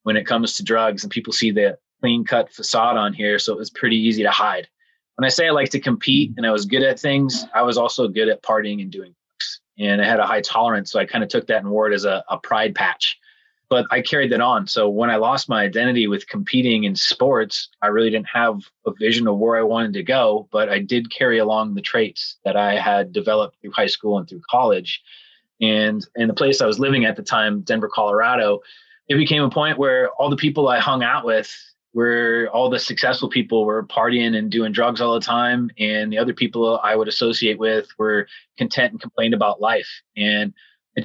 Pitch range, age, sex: 110-135 Hz, 20-39, male